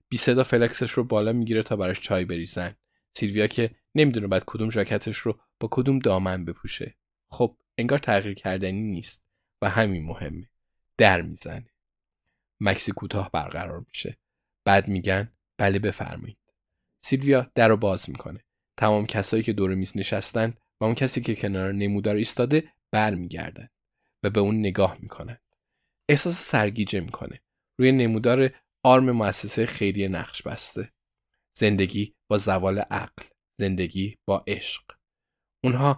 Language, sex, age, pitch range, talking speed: Persian, male, 20-39, 95-120 Hz, 135 wpm